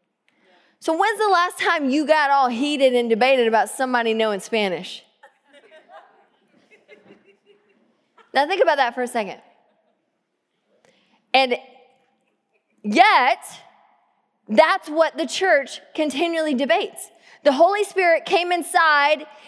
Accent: American